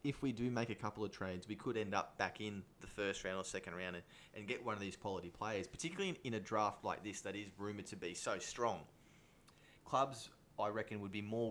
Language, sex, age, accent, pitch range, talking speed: English, male, 20-39, Australian, 90-105 Hz, 240 wpm